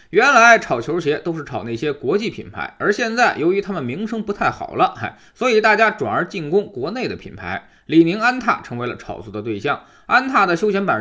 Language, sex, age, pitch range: Chinese, male, 20-39, 145-235 Hz